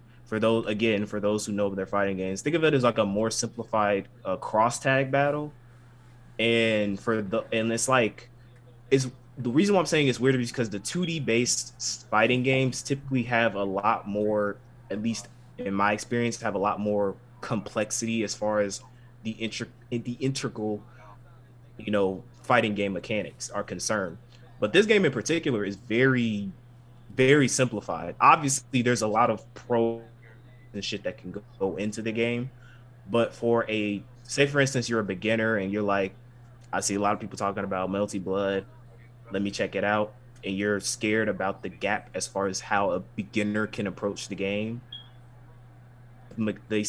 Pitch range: 105-120 Hz